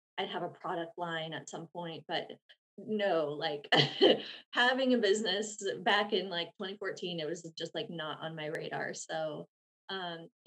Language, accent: English, American